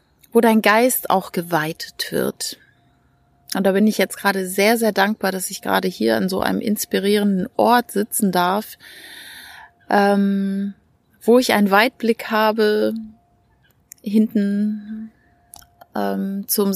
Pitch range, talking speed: 190-220 Hz, 125 wpm